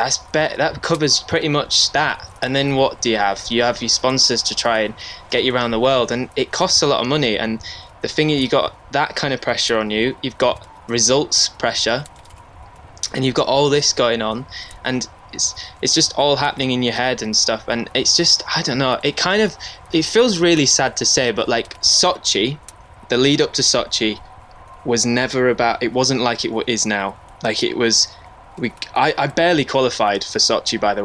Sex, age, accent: male, 10-29, British